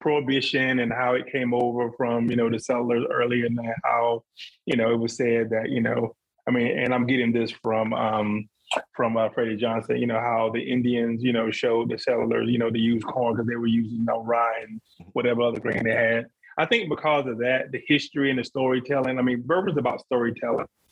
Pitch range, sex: 120-145 Hz, male